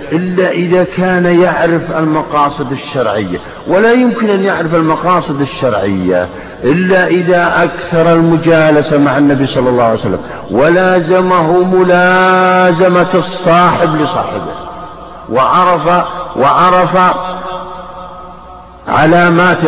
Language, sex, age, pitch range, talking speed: Arabic, male, 50-69, 165-190 Hz, 90 wpm